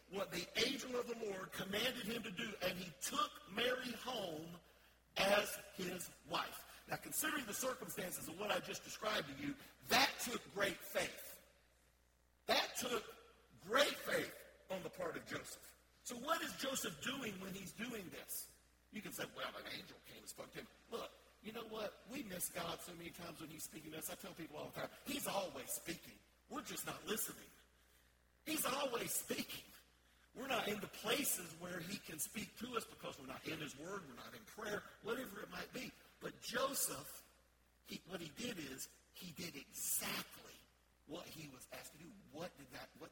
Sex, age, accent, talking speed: male, 50-69, American, 190 wpm